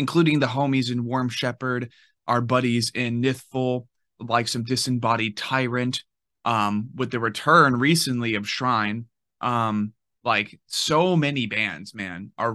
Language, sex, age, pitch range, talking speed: English, male, 20-39, 110-130 Hz, 135 wpm